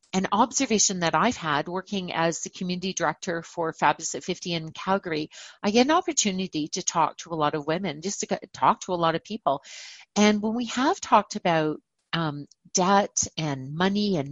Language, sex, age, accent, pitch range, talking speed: English, female, 40-59, American, 160-200 Hz, 195 wpm